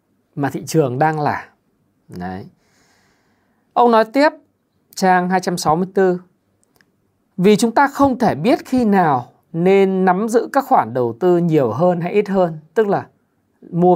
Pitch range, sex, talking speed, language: 155-210 Hz, male, 145 wpm, Vietnamese